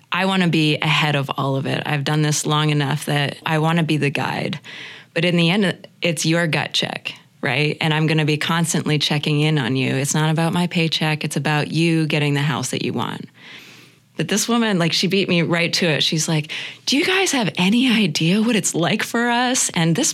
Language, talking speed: English, 235 wpm